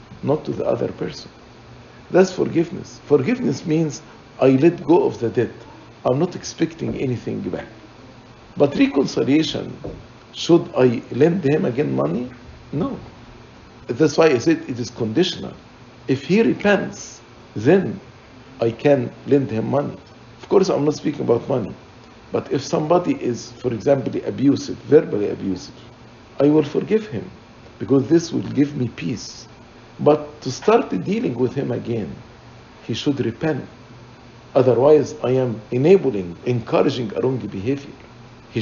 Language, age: English, 50-69